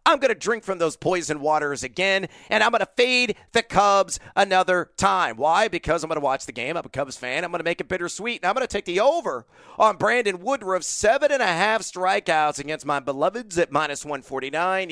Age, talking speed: 40-59, 230 wpm